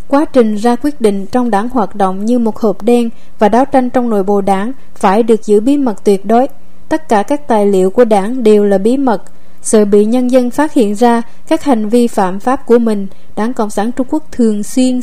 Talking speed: 235 wpm